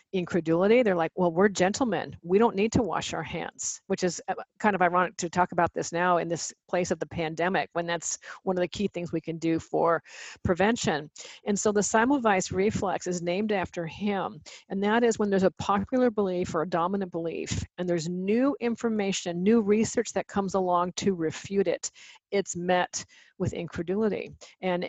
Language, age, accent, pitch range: Portuguese, 50-69, American, 175-200 Hz